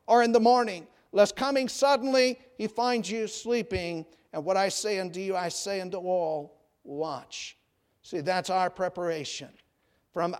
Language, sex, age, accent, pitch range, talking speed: English, male, 50-69, American, 175-220 Hz, 155 wpm